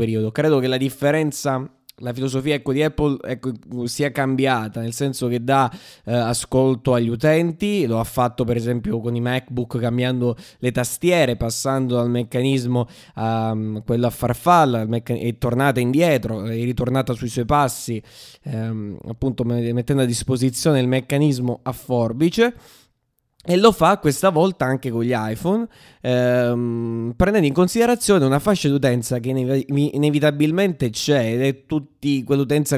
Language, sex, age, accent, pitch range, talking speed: Italian, male, 20-39, native, 120-145 Hz, 145 wpm